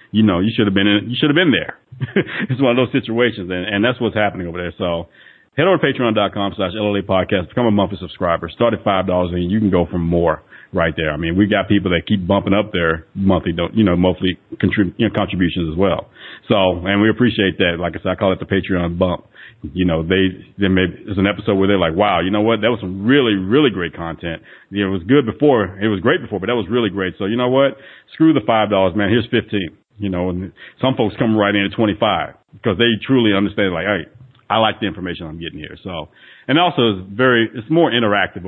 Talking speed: 250 wpm